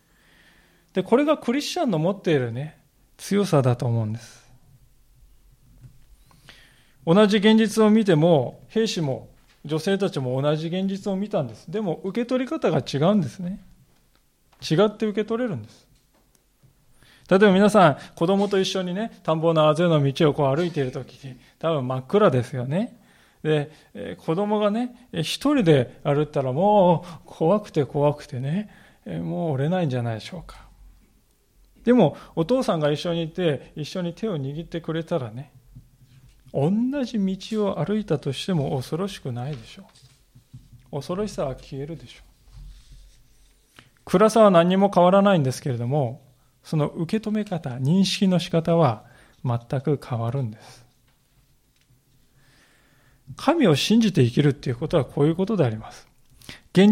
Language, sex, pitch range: Japanese, male, 130-195 Hz